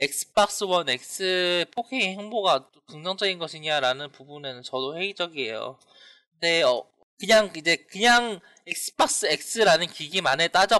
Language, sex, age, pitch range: Korean, male, 20-39, 140-205 Hz